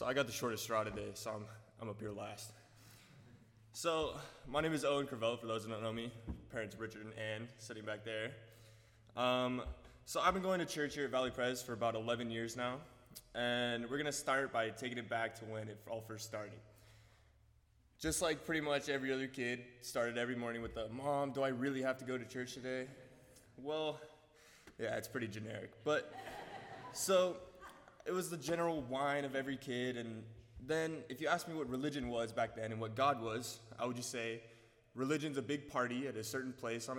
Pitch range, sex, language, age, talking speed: 115-145 Hz, male, English, 20-39, 210 wpm